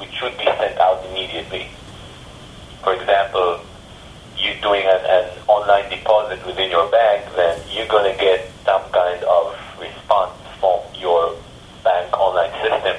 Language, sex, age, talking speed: English, male, 40-59, 140 wpm